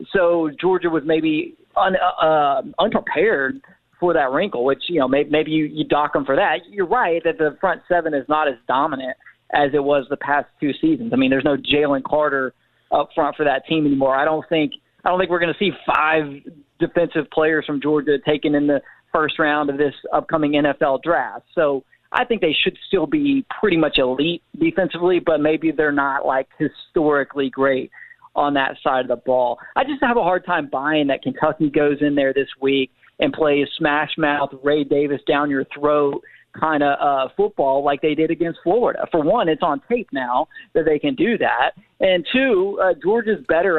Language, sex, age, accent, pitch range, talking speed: English, male, 40-59, American, 145-175 Hz, 195 wpm